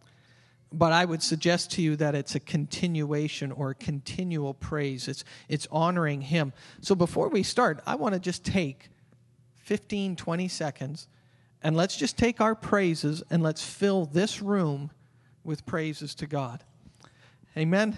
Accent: American